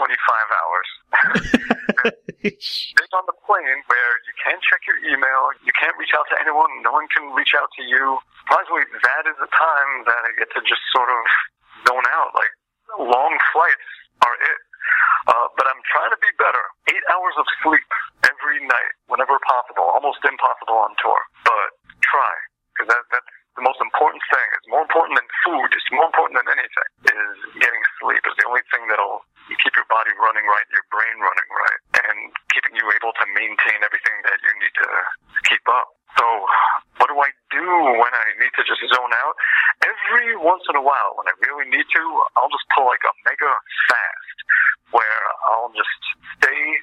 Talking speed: 185 wpm